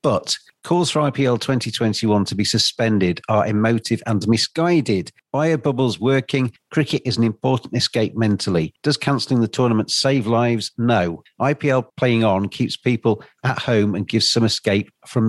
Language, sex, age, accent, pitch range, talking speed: English, male, 40-59, British, 105-125 Hz, 155 wpm